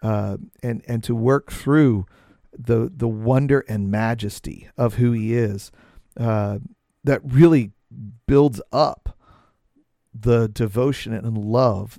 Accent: American